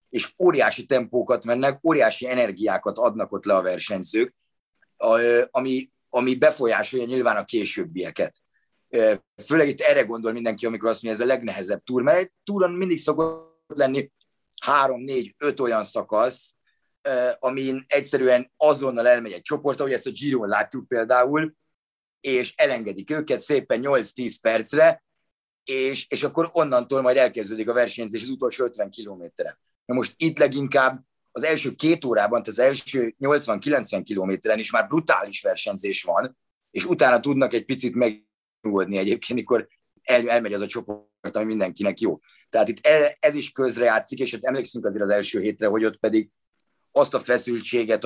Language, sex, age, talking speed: Hungarian, male, 30-49, 150 wpm